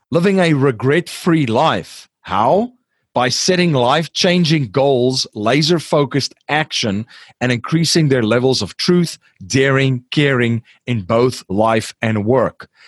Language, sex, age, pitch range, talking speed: English, male, 40-59, 125-160 Hz, 110 wpm